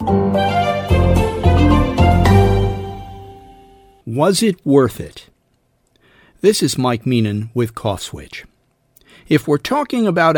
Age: 50-69